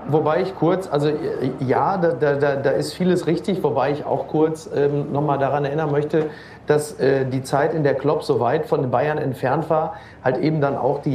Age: 40-59